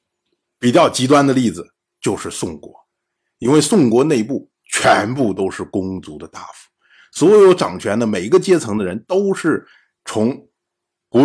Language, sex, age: Chinese, male, 50-69